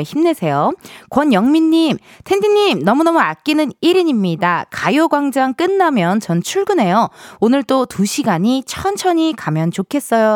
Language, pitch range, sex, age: Korean, 195-320 Hz, female, 20-39